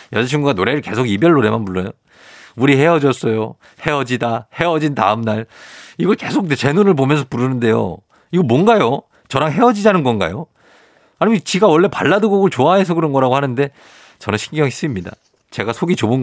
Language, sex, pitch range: Korean, male, 110-160 Hz